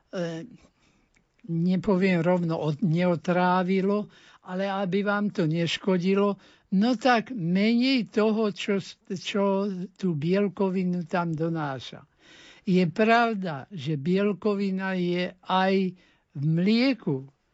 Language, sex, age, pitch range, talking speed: Slovak, male, 60-79, 170-215 Hz, 90 wpm